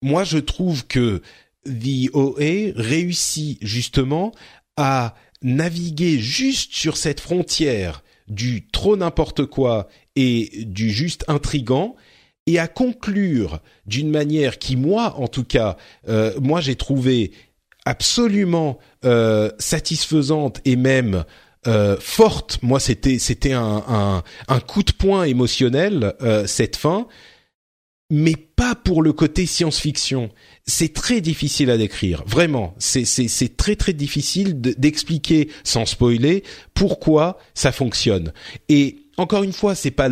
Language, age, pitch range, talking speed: French, 40-59, 120-155 Hz, 130 wpm